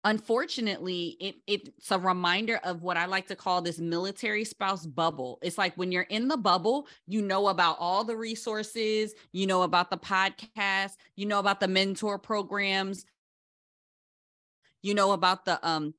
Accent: American